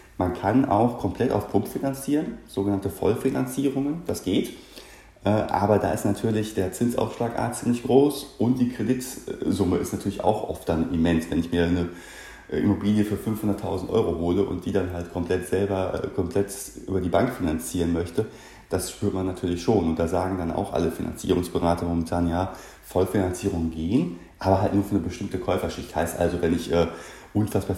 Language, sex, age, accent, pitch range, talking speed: German, male, 30-49, German, 85-100 Hz, 170 wpm